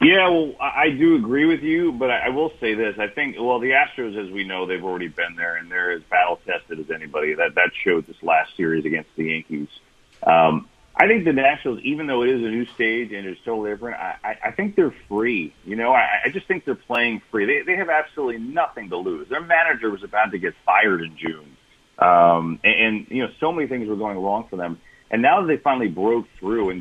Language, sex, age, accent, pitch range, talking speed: English, male, 40-59, American, 90-150 Hz, 240 wpm